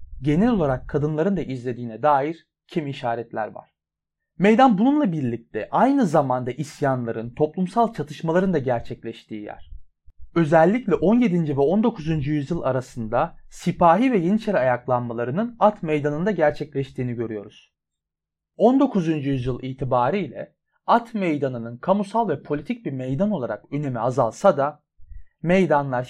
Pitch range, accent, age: 125-190 Hz, native, 30-49